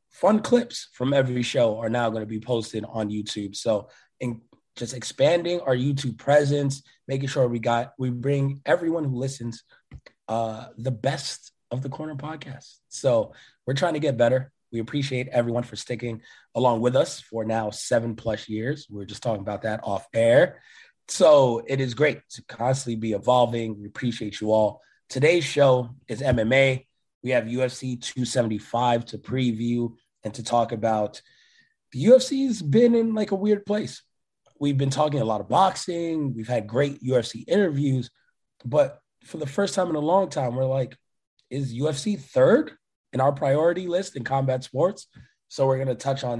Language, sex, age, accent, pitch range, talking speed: English, male, 20-39, American, 115-140 Hz, 175 wpm